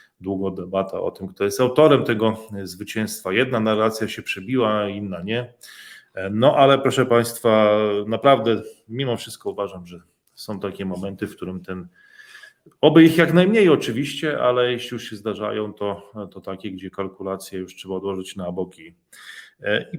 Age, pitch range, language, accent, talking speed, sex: 30-49, 100-120 Hz, Polish, native, 155 wpm, male